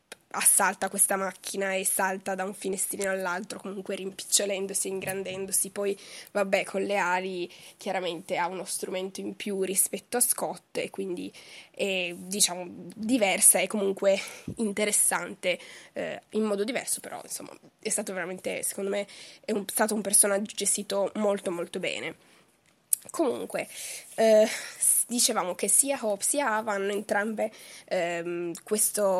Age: 10-29